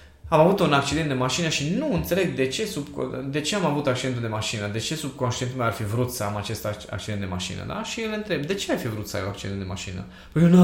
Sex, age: male, 20-39